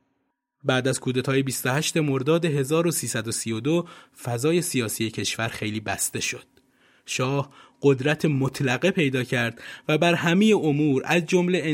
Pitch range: 125-170 Hz